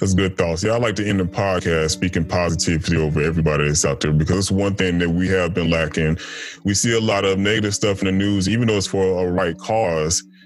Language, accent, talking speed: English, American, 245 wpm